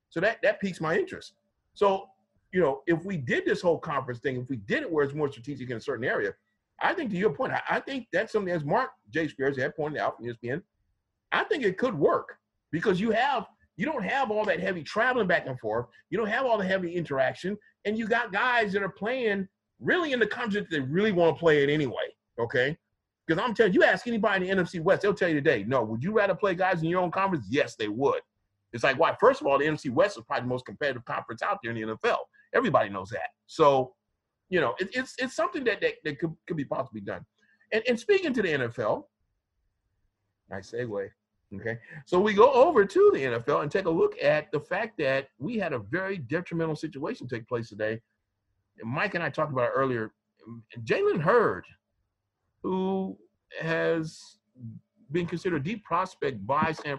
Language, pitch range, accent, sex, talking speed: English, 120-200 Hz, American, male, 220 wpm